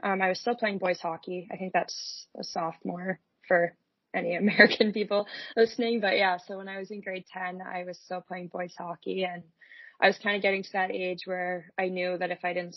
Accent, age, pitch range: American, 20-39, 170-185 Hz